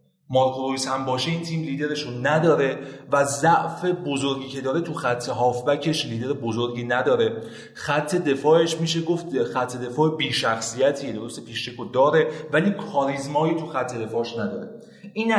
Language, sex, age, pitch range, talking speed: Persian, male, 30-49, 140-190 Hz, 135 wpm